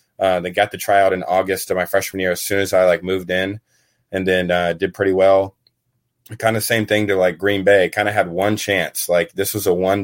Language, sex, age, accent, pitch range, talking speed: English, male, 20-39, American, 90-105 Hz, 250 wpm